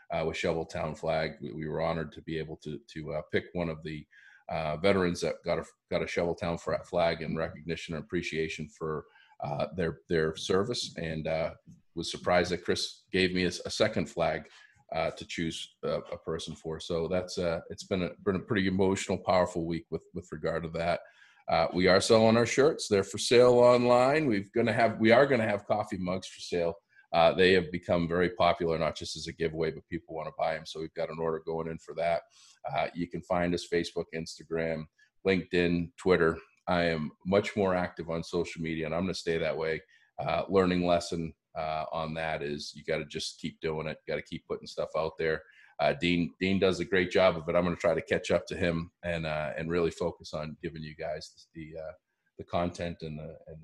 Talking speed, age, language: 225 wpm, 40-59, English